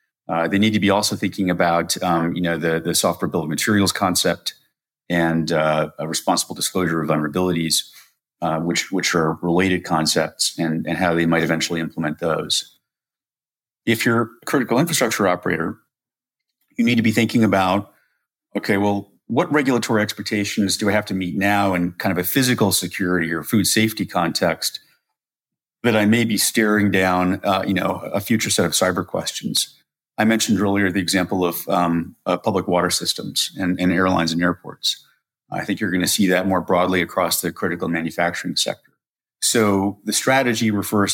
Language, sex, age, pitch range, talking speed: English, male, 40-59, 85-105 Hz, 175 wpm